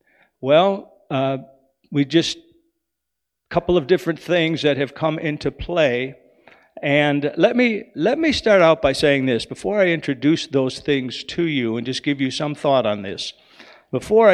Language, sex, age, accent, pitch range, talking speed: English, male, 50-69, American, 135-170 Hz, 165 wpm